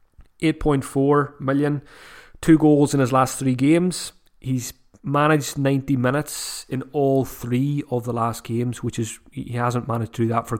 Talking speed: 165 wpm